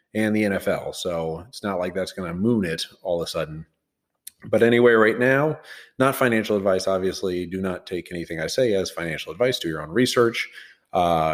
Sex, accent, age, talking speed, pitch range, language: male, American, 30-49, 200 wpm, 85-115 Hz, English